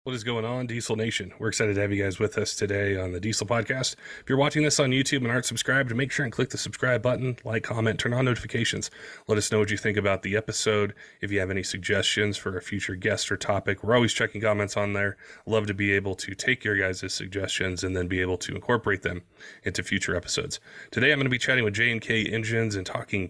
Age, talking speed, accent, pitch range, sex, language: 30-49, 250 wpm, American, 100-110 Hz, male, English